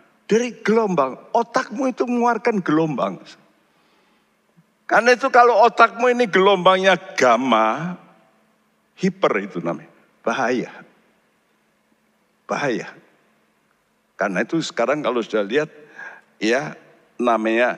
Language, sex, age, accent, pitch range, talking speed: Indonesian, male, 60-79, native, 140-230 Hz, 90 wpm